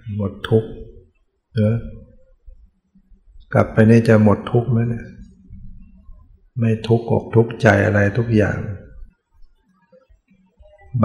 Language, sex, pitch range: Thai, male, 100-115 Hz